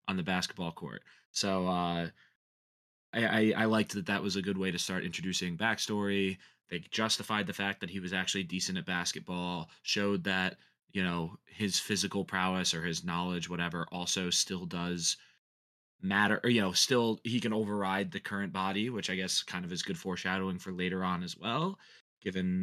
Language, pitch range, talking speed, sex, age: English, 90-105 Hz, 185 wpm, male, 20-39